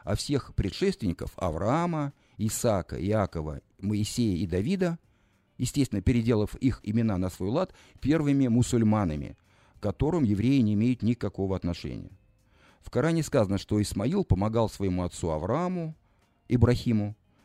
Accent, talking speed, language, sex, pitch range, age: native, 120 wpm, Russian, male, 95-125 Hz, 50-69